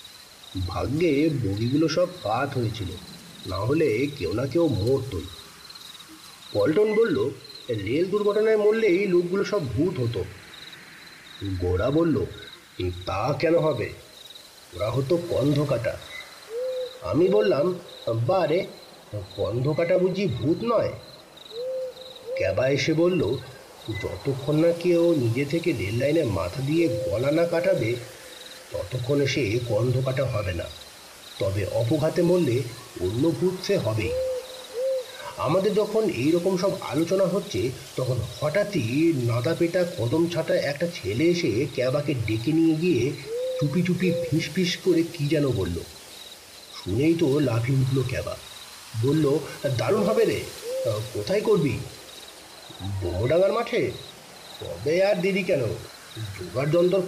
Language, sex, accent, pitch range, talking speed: Bengali, male, native, 125-190 Hz, 90 wpm